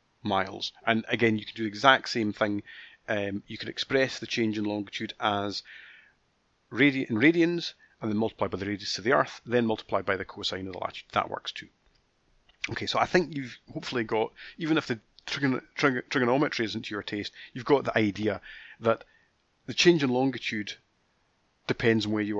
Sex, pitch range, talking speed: male, 105-140 Hz, 180 wpm